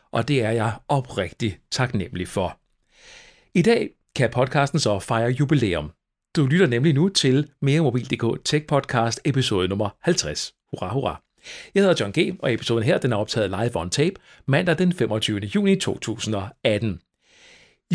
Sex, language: male, Danish